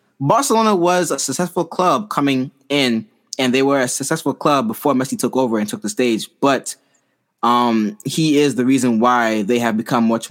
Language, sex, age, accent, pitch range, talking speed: English, male, 20-39, American, 120-160 Hz, 185 wpm